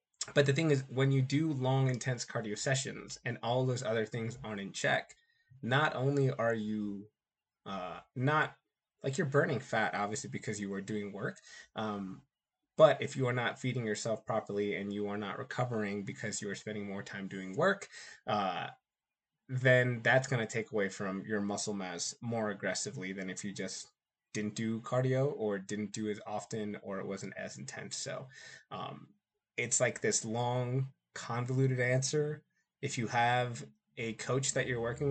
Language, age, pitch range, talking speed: English, 20-39, 105-130 Hz, 175 wpm